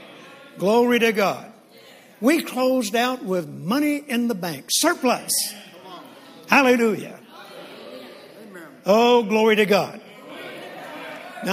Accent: American